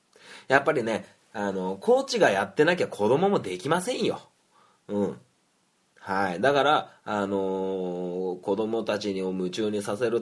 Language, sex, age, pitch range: Japanese, male, 20-39, 95-160 Hz